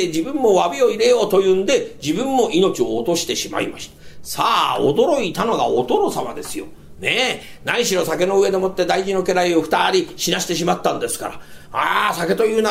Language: Japanese